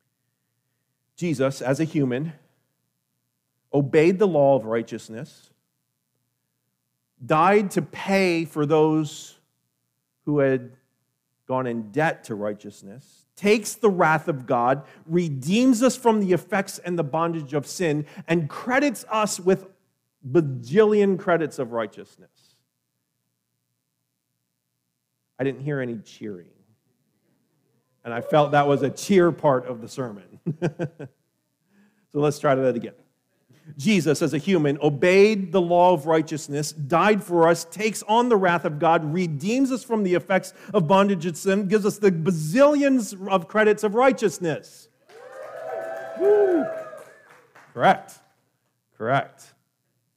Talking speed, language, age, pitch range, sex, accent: 120 wpm, English, 40-59, 130-195 Hz, male, American